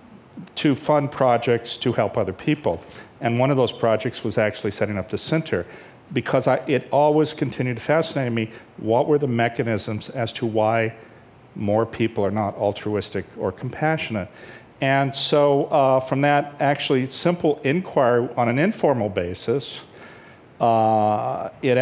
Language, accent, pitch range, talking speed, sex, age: English, American, 115-140 Hz, 145 wpm, male, 50-69